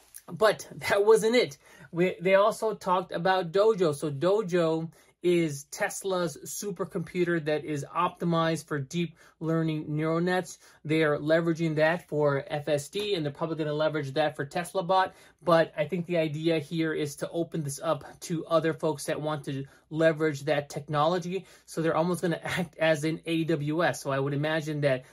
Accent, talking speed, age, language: American, 175 wpm, 20-39, English